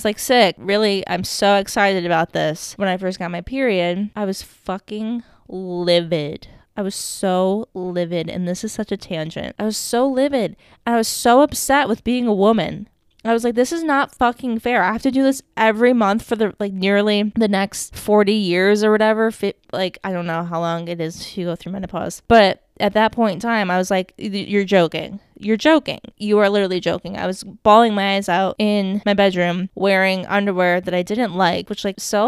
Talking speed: 210 wpm